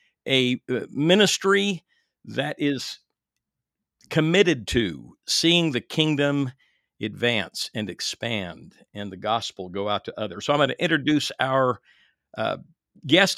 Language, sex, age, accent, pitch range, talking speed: English, male, 50-69, American, 120-155 Hz, 120 wpm